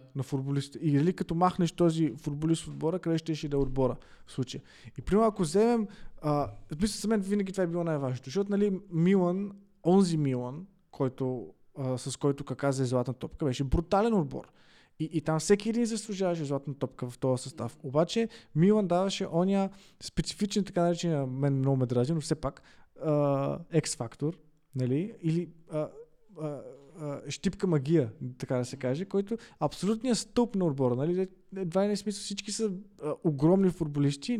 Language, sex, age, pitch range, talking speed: Bulgarian, male, 20-39, 145-195 Hz, 170 wpm